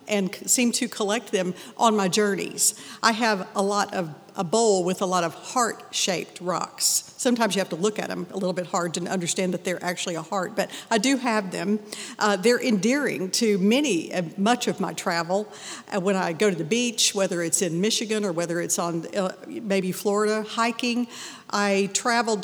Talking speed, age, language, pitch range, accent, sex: 200 wpm, 50-69, English, 180-215 Hz, American, female